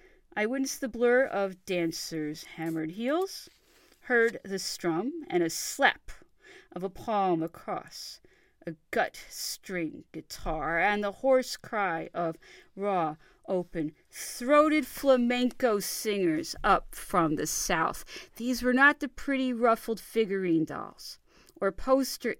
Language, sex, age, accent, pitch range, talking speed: English, female, 40-59, American, 180-275 Hz, 120 wpm